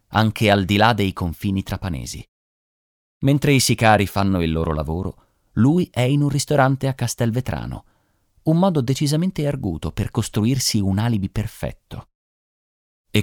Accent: native